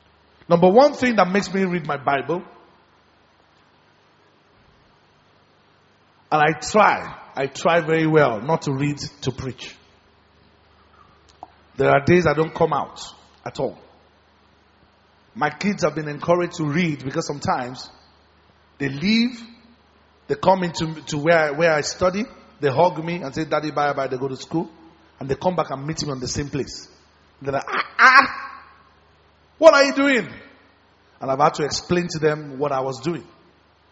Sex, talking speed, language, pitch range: male, 160 wpm, English, 130-170 Hz